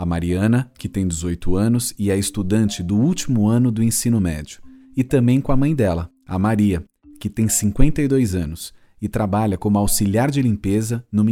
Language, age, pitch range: Portuguese, 40-59, 95-125 Hz